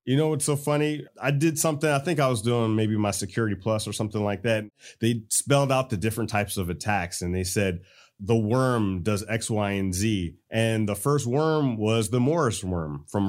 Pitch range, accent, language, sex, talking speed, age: 105-135 Hz, American, English, male, 215 wpm, 30-49